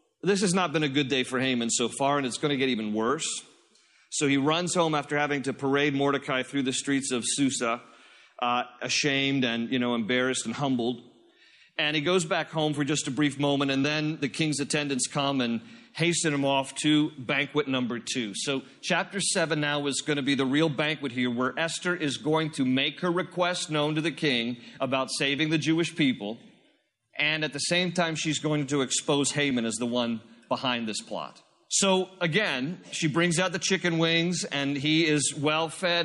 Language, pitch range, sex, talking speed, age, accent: English, 135-165 Hz, male, 200 wpm, 40-59, American